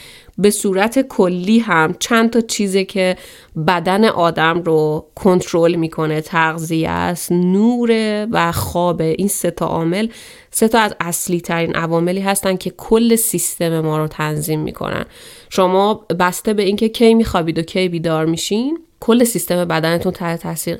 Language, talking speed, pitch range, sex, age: Persian, 145 wpm, 165-195 Hz, female, 30-49